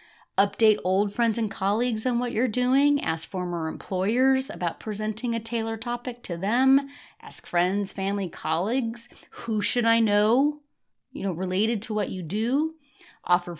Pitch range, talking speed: 185-250 Hz, 155 wpm